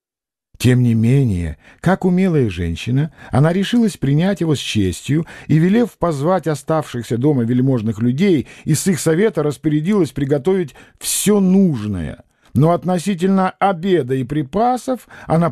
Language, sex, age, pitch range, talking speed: English, male, 50-69, 120-170 Hz, 125 wpm